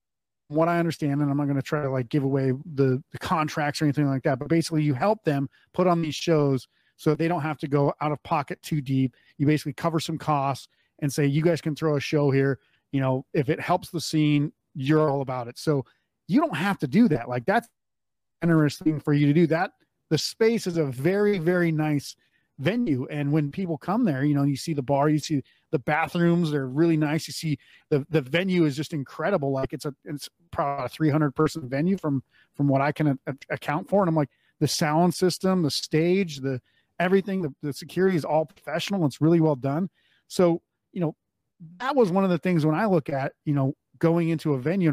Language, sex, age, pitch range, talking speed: English, male, 30-49, 140-165 Hz, 225 wpm